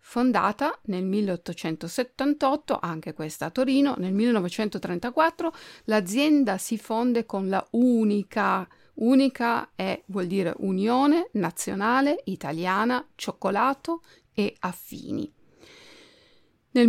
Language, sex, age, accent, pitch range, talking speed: Italian, female, 50-69, native, 190-270 Hz, 90 wpm